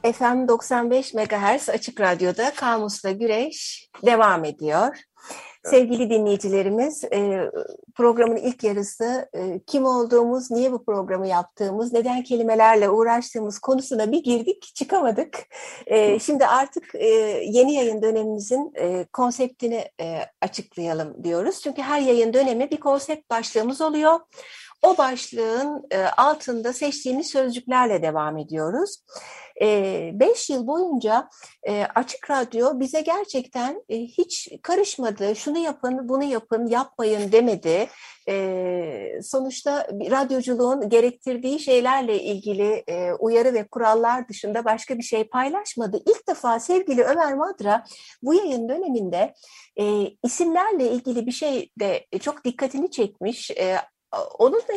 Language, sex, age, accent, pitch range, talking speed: Turkish, female, 60-79, native, 220-290 Hz, 105 wpm